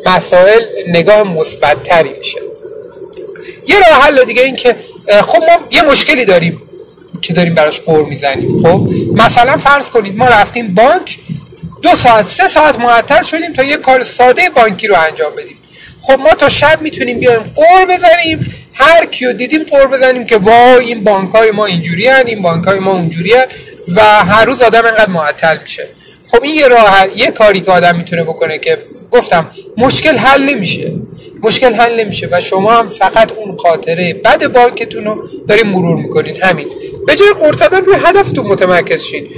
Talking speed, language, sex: 170 wpm, Persian, male